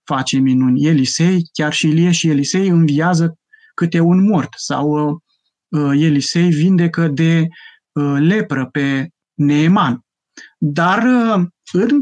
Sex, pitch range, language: male, 150-190 Hz, Romanian